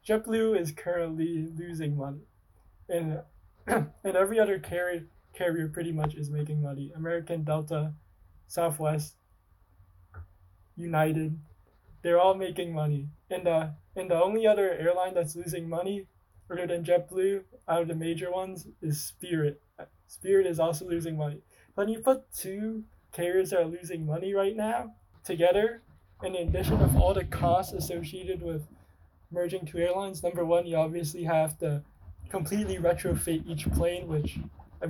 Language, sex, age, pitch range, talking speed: English, male, 20-39, 150-175 Hz, 145 wpm